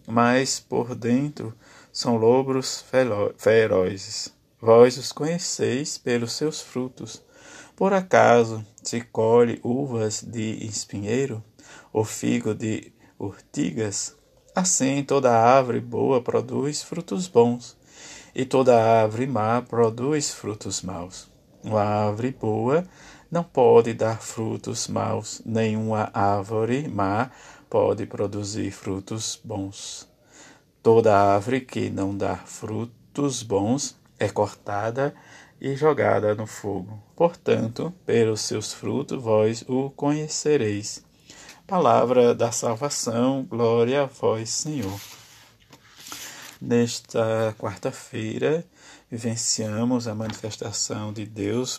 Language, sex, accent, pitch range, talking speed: Portuguese, male, Brazilian, 110-130 Hz, 100 wpm